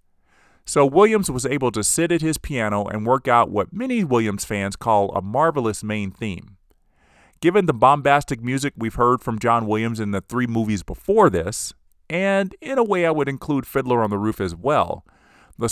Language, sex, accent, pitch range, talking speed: English, male, American, 100-140 Hz, 190 wpm